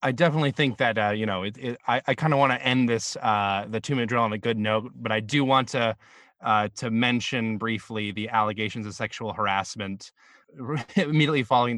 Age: 20-39